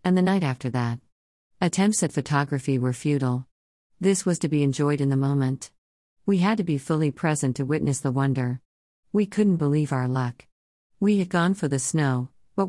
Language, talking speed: English, 190 wpm